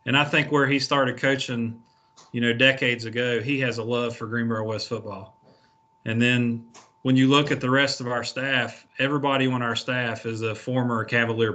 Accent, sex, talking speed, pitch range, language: American, male, 195 wpm, 115-135 Hz, English